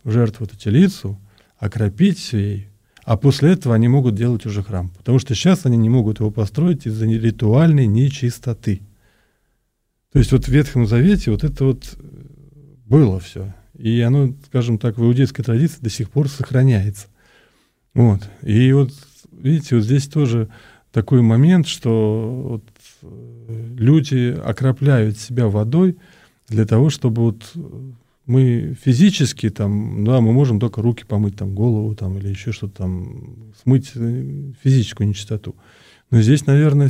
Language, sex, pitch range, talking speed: Russian, male, 110-135 Hz, 145 wpm